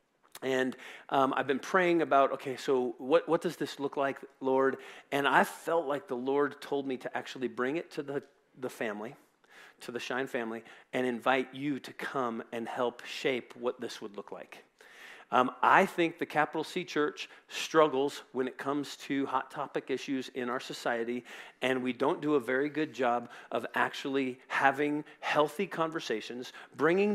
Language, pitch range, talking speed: English, 130-165 Hz, 175 wpm